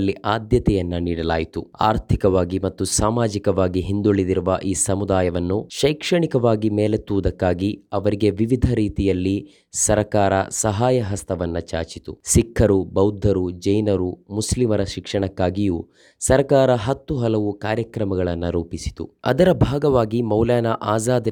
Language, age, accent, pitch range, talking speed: Kannada, 20-39, native, 95-115 Hz, 85 wpm